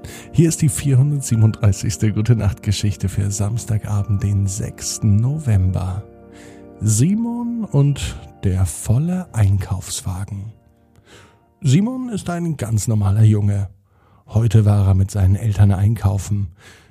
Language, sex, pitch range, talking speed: German, male, 105-125 Hz, 100 wpm